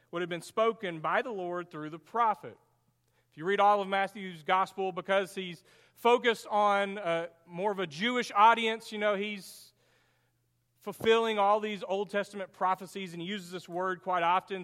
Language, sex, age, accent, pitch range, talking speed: English, male, 40-59, American, 165-215 Hz, 175 wpm